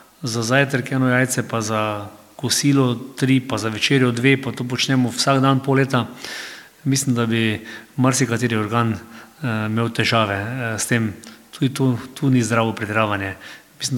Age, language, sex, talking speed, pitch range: 40-59, German, male, 145 wpm, 110-130 Hz